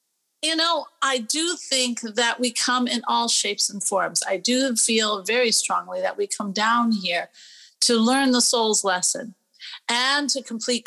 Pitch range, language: 200-265 Hz, English